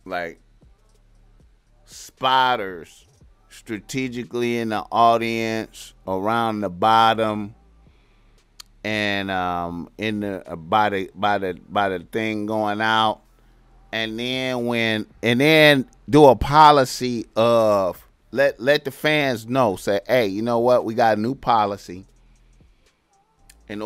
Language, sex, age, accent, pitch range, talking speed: English, male, 30-49, American, 105-130 Hz, 120 wpm